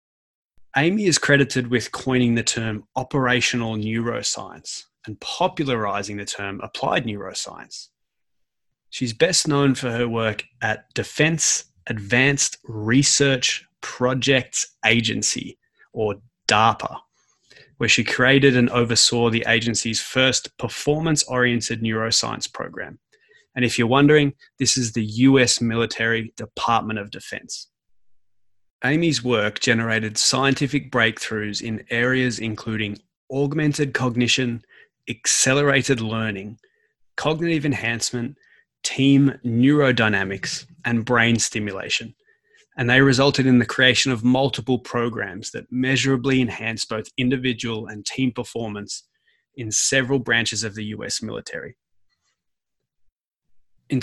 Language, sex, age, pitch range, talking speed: English, male, 20-39, 110-135 Hz, 110 wpm